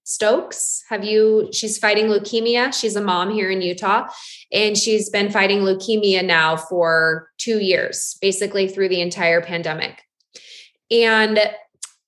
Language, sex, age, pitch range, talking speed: English, female, 20-39, 180-235 Hz, 135 wpm